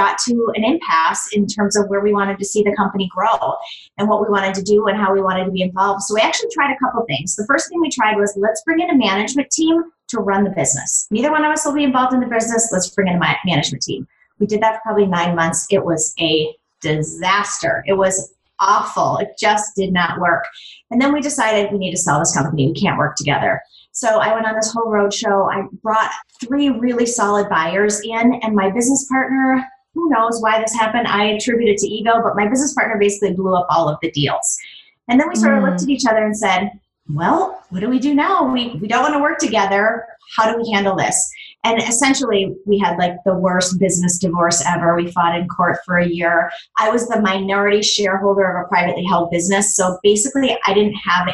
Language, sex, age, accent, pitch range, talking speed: English, female, 30-49, American, 190-240 Hz, 235 wpm